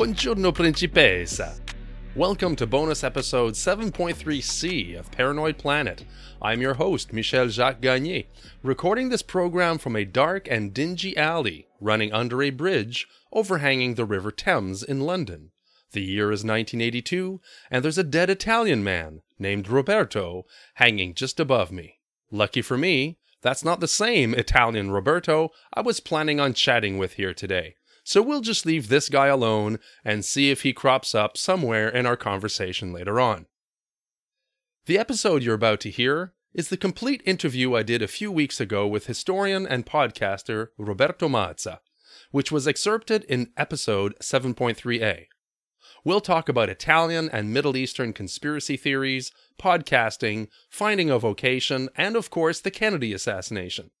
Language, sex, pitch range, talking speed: English, male, 110-170 Hz, 150 wpm